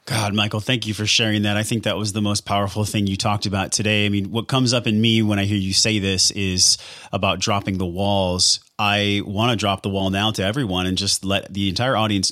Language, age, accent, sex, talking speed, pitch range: English, 30-49, American, male, 250 wpm, 95-115 Hz